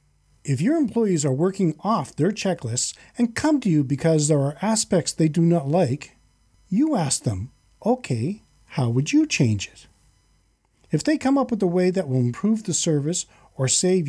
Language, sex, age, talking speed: English, male, 40-59, 185 wpm